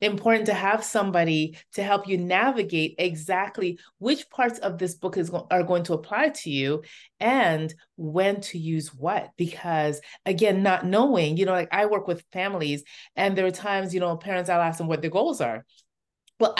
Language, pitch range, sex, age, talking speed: English, 165-205 Hz, female, 30-49, 190 wpm